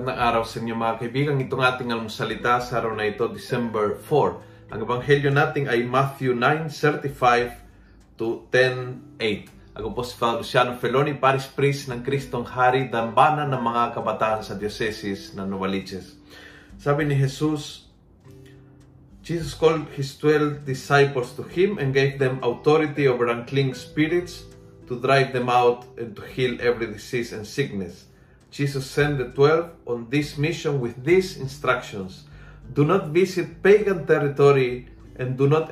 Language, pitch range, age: Filipino, 120-145 Hz, 30-49